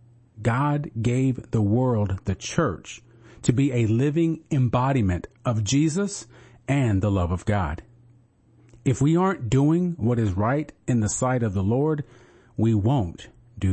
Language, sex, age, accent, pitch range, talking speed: English, male, 40-59, American, 110-135 Hz, 150 wpm